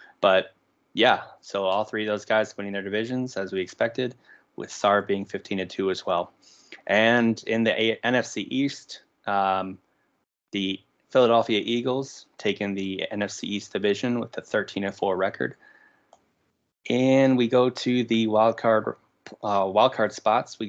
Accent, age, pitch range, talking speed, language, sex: American, 20-39, 100-115 Hz, 135 wpm, English, male